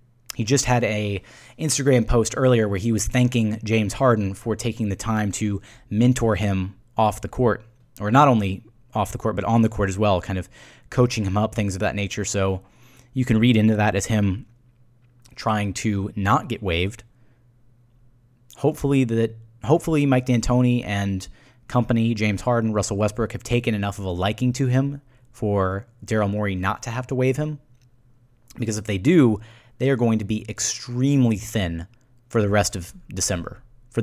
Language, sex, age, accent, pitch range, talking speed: English, male, 20-39, American, 105-125 Hz, 180 wpm